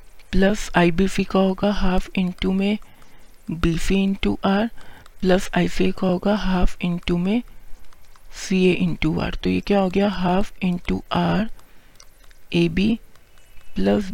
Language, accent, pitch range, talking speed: Hindi, native, 170-200 Hz, 150 wpm